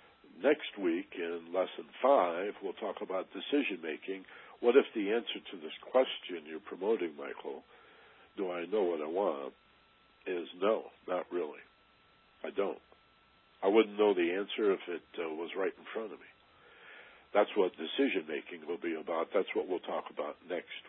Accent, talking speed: American, 165 wpm